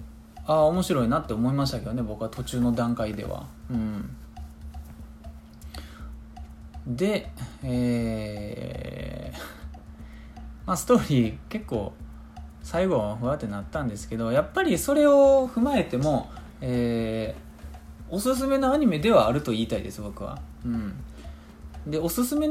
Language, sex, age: Japanese, male, 20-39